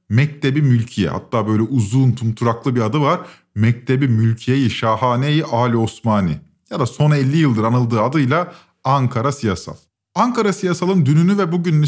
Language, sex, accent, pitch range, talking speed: Turkish, male, native, 120-175 Hz, 140 wpm